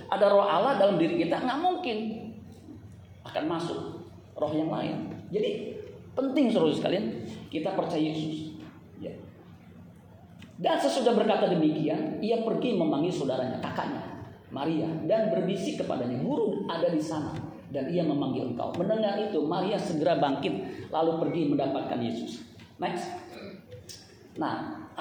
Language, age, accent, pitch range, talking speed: Indonesian, 40-59, native, 155-245 Hz, 125 wpm